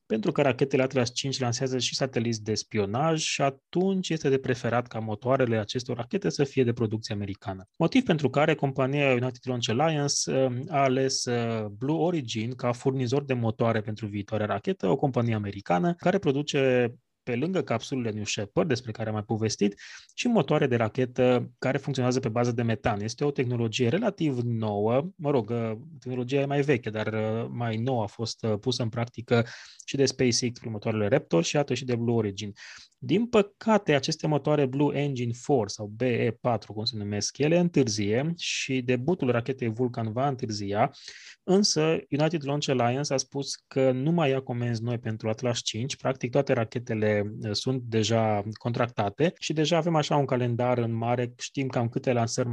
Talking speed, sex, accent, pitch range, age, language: 170 wpm, male, native, 115-140 Hz, 20-39, Romanian